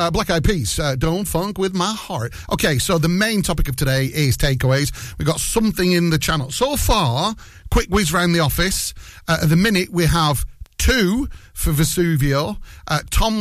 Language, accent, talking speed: English, British, 195 wpm